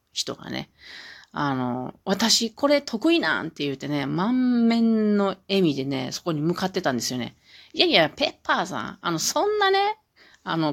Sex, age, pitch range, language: female, 40-59, 145-230 Hz, Japanese